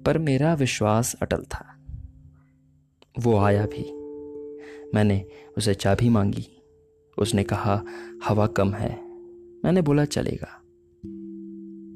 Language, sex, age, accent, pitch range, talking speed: Hindi, male, 20-39, native, 100-145 Hz, 100 wpm